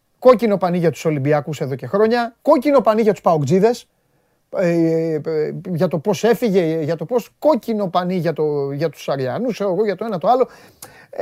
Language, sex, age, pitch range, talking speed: Greek, male, 30-49, 165-225 Hz, 180 wpm